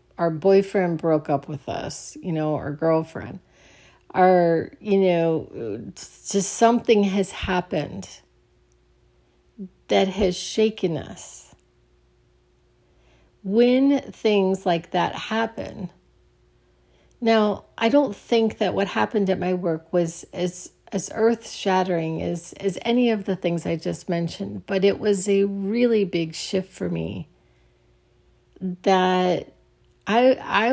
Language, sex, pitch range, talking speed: English, female, 170-200 Hz, 120 wpm